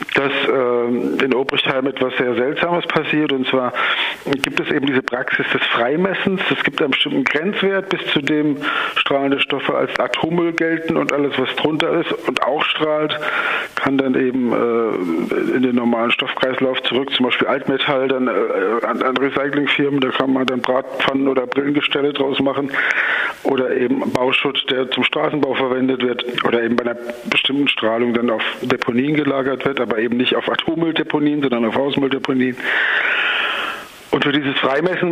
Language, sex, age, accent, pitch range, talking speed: German, male, 50-69, German, 125-150 Hz, 165 wpm